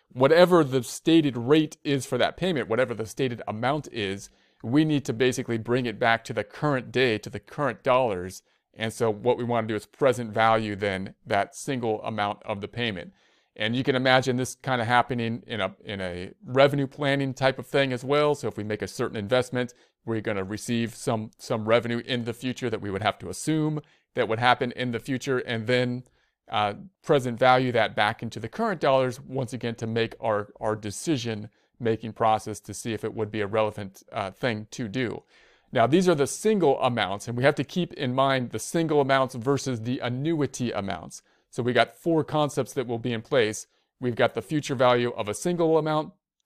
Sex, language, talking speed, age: male, English, 210 wpm, 40-59